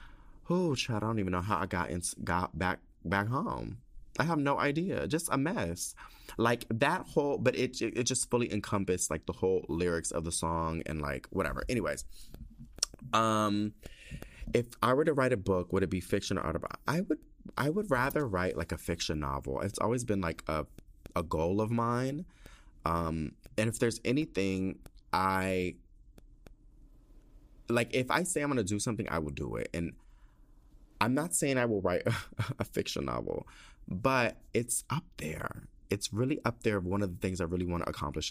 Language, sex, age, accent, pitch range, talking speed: English, male, 20-39, American, 80-110 Hz, 185 wpm